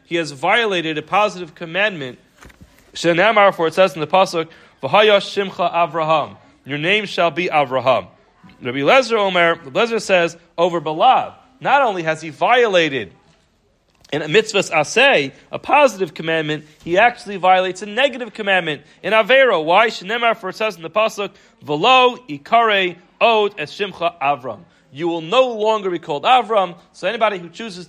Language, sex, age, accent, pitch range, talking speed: English, male, 30-49, American, 165-215 Hz, 155 wpm